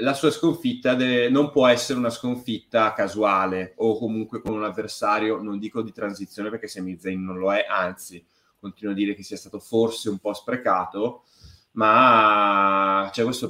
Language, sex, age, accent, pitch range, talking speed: Italian, male, 30-49, native, 100-130 Hz, 175 wpm